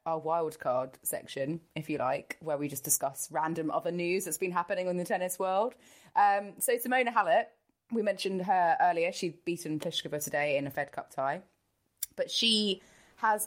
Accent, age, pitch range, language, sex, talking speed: British, 20-39, 140-190 Hz, English, female, 185 wpm